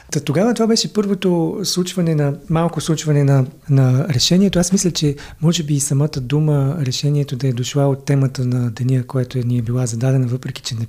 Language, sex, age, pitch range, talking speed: Bulgarian, male, 40-59, 140-175 Hz, 205 wpm